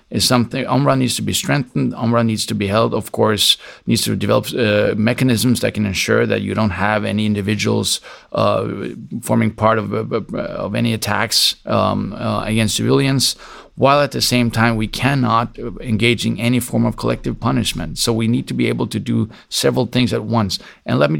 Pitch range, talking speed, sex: 110-125 Hz, 195 wpm, male